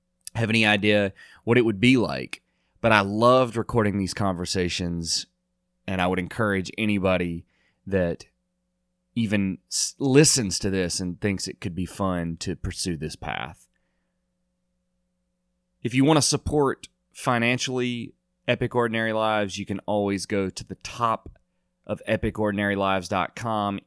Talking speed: 135 wpm